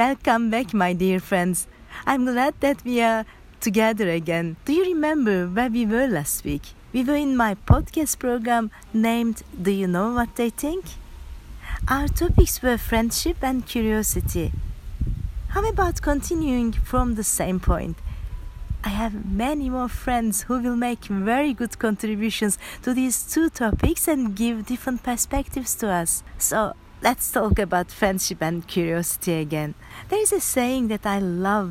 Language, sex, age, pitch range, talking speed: Turkish, female, 40-59, 180-250 Hz, 155 wpm